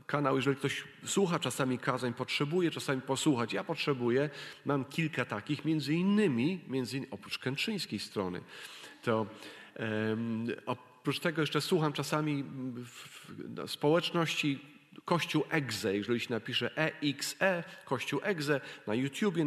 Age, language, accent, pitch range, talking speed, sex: 40-59, Polish, native, 130-160 Hz, 125 wpm, male